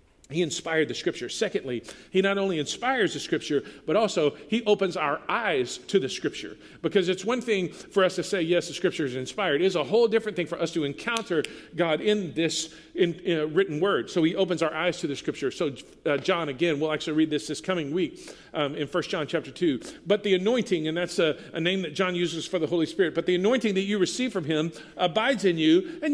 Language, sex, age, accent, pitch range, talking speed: English, male, 50-69, American, 155-210 Hz, 230 wpm